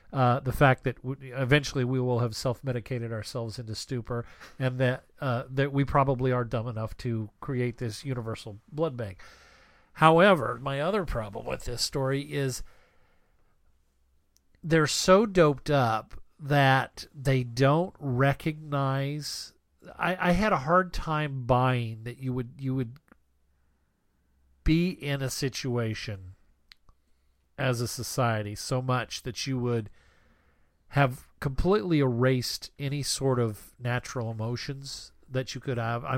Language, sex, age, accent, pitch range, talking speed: English, male, 40-59, American, 115-140 Hz, 135 wpm